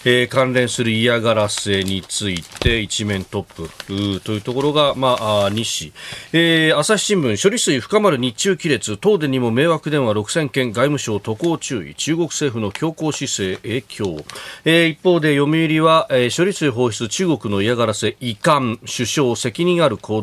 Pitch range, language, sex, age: 100-140 Hz, Japanese, male, 40-59